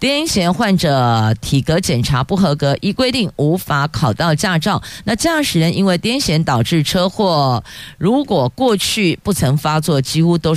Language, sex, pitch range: Chinese, female, 125-185 Hz